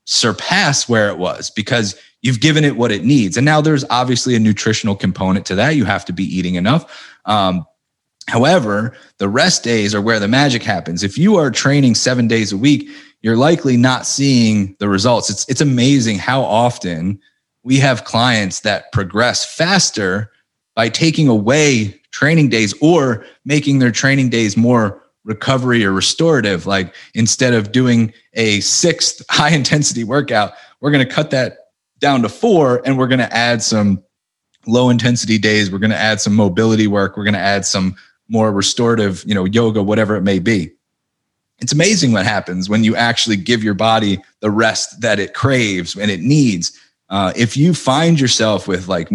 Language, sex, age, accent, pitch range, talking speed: English, male, 30-49, American, 100-130 Hz, 180 wpm